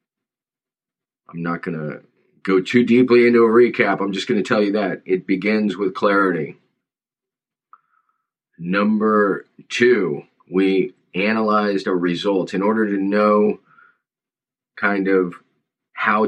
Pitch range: 90-110 Hz